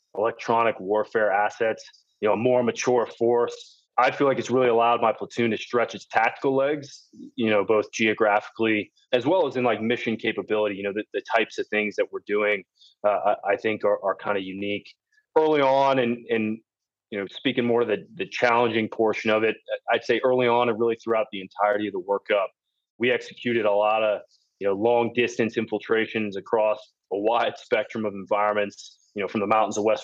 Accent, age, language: American, 20-39, English